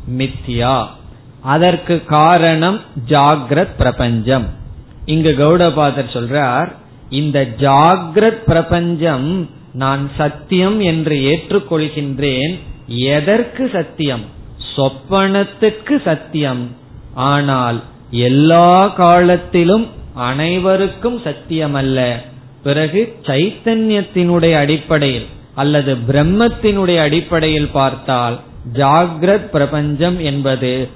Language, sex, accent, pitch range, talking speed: Tamil, male, native, 130-170 Hz, 65 wpm